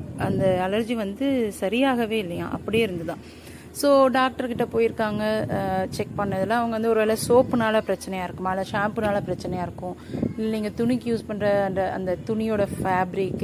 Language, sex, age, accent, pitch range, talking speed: Tamil, female, 30-49, native, 185-245 Hz, 145 wpm